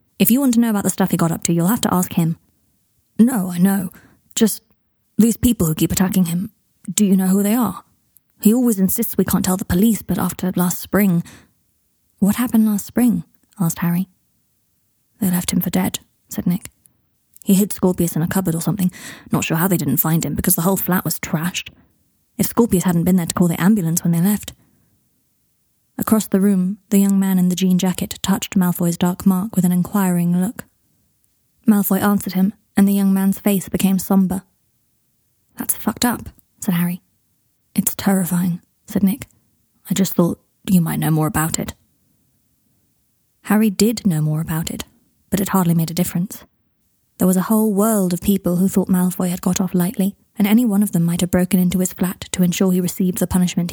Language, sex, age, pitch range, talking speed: English, female, 20-39, 175-200 Hz, 200 wpm